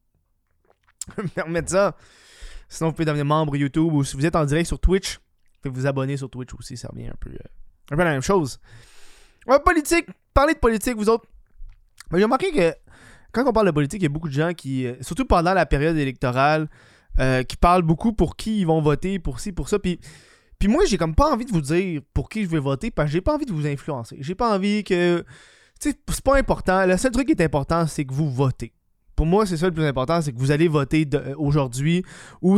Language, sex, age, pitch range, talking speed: French, male, 20-39, 140-185 Hz, 235 wpm